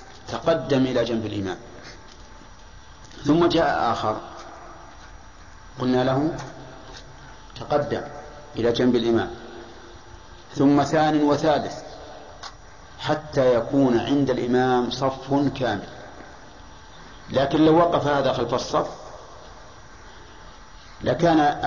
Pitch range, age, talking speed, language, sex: 115-145 Hz, 50-69, 80 wpm, Arabic, male